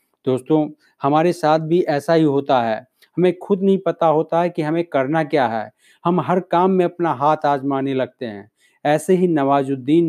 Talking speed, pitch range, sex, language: 185 wpm, 135-170 Hz, male, Hindi